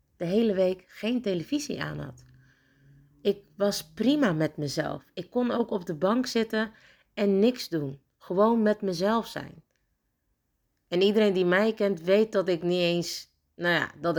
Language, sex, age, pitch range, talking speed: Dutch, female, 40-59, 150-195 Hz, 165 wpm